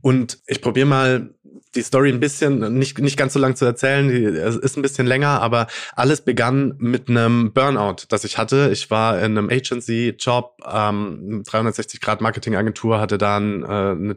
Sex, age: male, 20-39